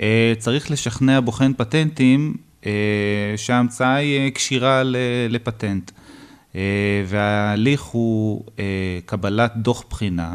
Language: Hebrew